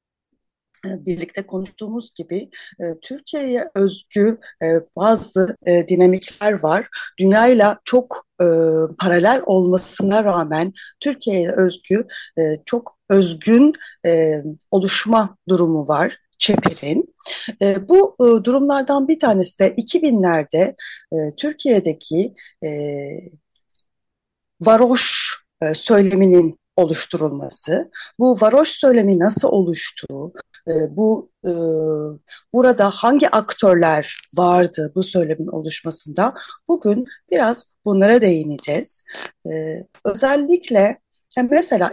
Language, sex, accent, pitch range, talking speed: Turkish, female, native, 170-235 Hz, 70 wpm